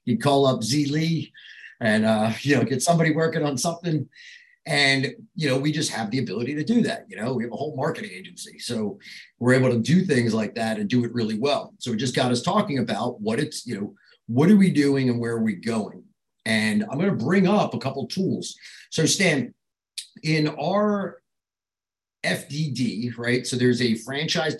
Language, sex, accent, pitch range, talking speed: English, male, American, 120-160 Hz, 205 wpm